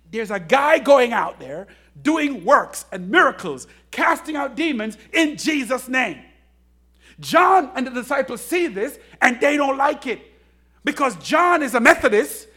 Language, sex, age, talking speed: English, male, 50-69, 155 wpm